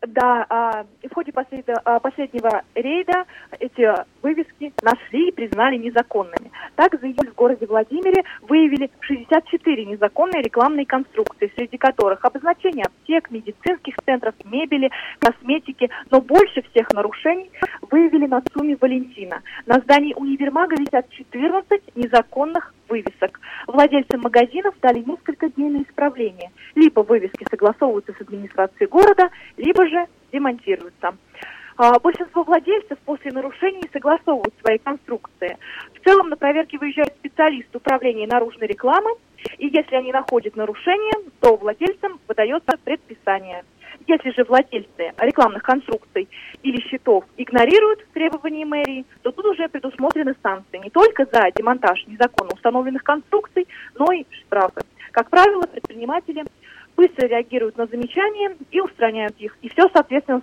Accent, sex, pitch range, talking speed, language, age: native, female, 235-330 Hz, 125 wpm, Russian, 20-39